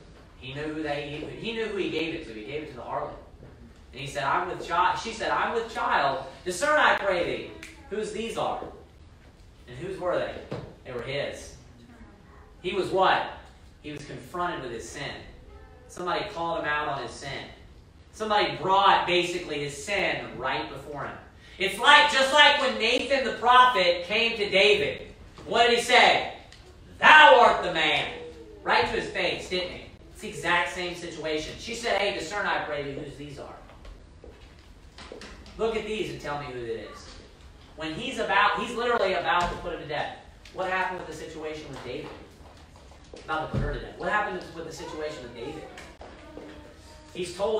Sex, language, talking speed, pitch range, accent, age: male, English, 185 wpm, 140-210 Hz, American, 30-49